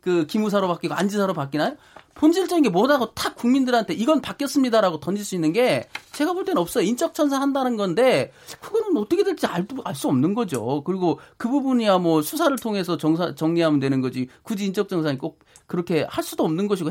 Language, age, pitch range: Korean, 40-59, 170-275 Hz